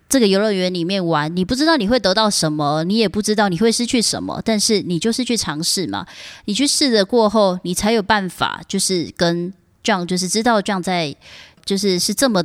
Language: Chinese